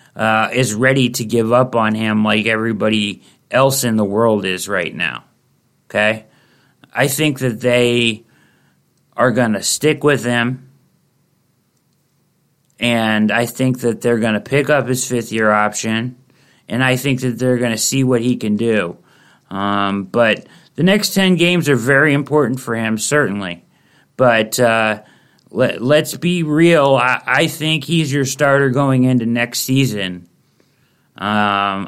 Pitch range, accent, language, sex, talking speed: 110-140 Hz, American, English, male, 150 wpm